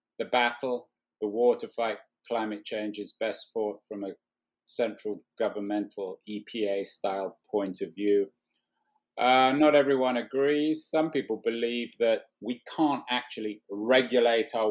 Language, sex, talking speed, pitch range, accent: English, male, 130 wpm, 110-135 Hz, British